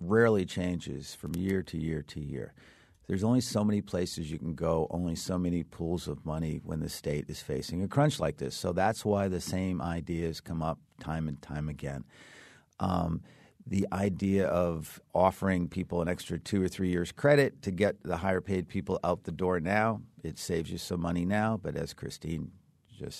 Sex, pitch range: male, 85-100 Hz